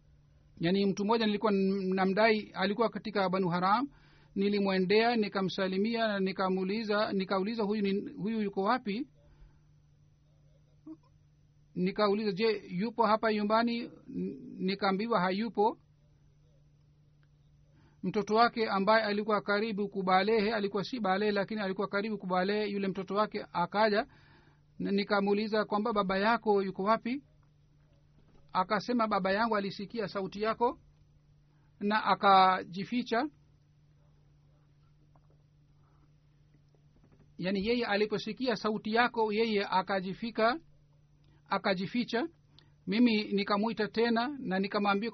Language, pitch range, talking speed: Swahili, 150-220 Hz, 90 wpm